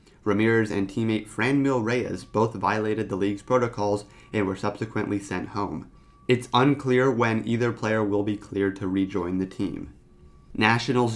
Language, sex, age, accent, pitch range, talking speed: English, male, 30-49, American, 100-120 Hz, 150 wpm